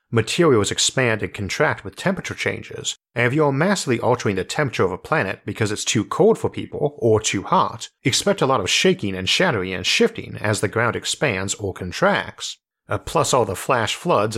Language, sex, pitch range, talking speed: English, male, 105-135 Hz, 200 wpm